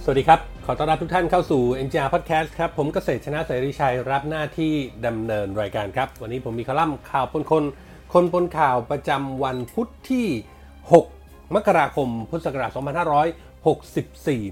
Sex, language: male, Thai